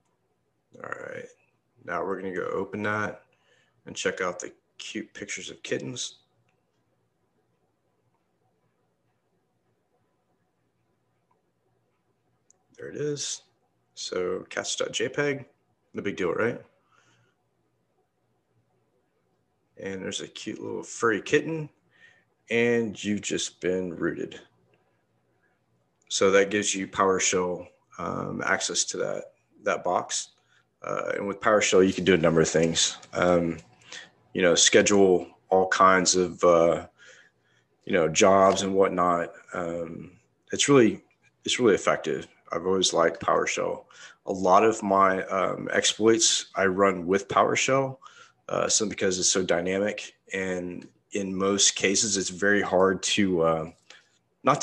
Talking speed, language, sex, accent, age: 120 wpm, English, male, American, 30-49